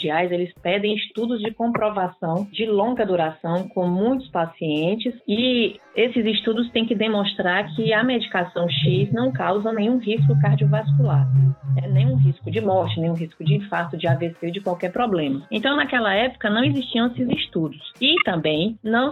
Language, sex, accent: Portuguese, female, Brazilian